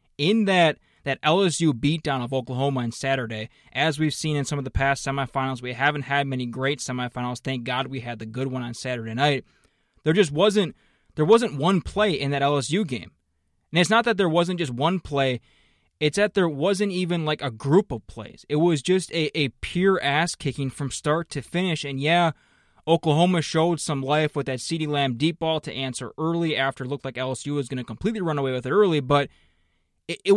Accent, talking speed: American, 210 wpm